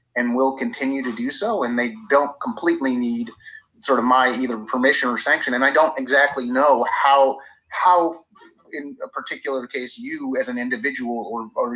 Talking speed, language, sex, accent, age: 180 wpm, English, male, American, 30-49